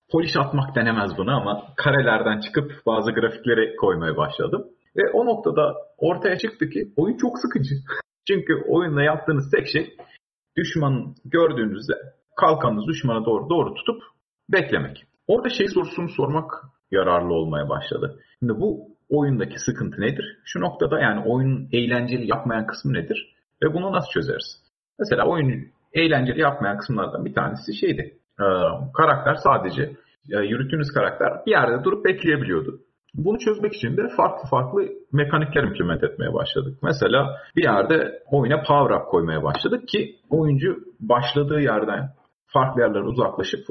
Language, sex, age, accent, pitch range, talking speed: Turkish, male, 40-59, native, 120-165 Hz, 135 wpm